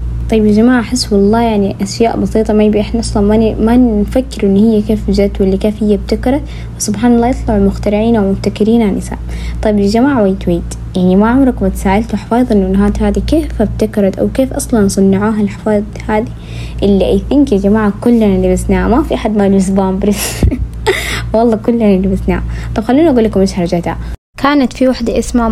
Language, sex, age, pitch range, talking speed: Arabic, female, 20-39, 195-235 Hz, 175 wpm